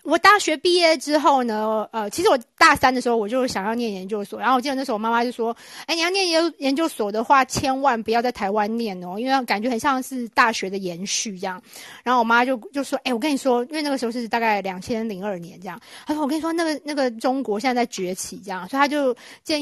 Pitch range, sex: 210-270 Hz, female